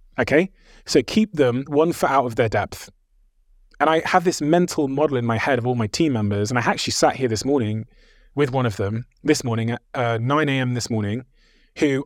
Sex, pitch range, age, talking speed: male, 110-135 Hz, 20-39, 215 wpm